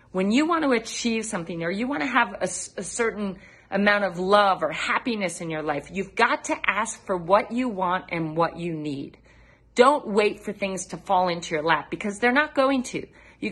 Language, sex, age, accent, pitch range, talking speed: English, female, 40-59, American, 180-240 Hz, 210 wpm